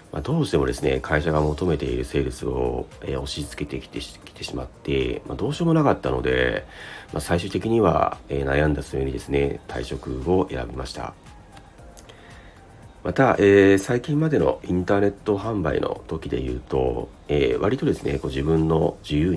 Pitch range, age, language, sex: 70-100 Hz, 40-59, Japanese, male